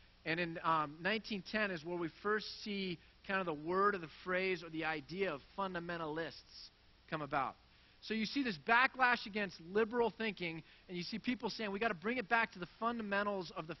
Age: 30-49